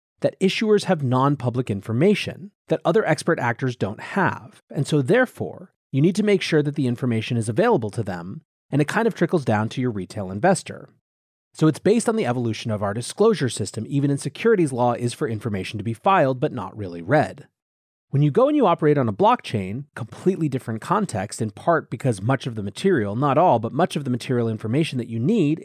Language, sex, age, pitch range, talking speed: English, male, 30-49, 110-150 Hz, 210 wpm